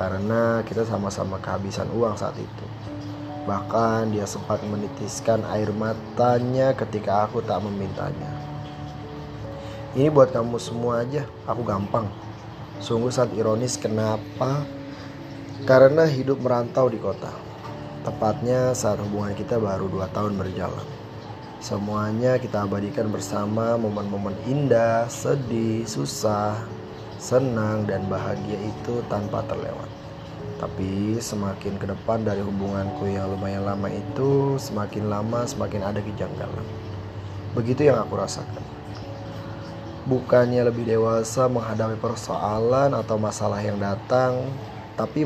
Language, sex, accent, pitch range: Indonesian, male, native, 100-120 Hz